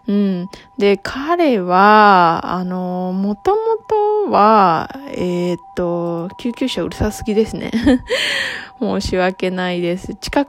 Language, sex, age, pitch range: Japanese, female, 20-39, 180-235 Hz